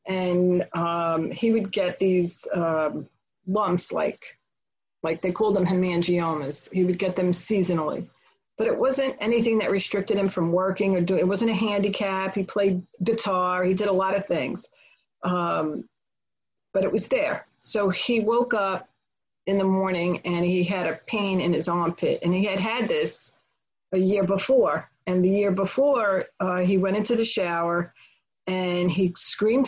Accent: American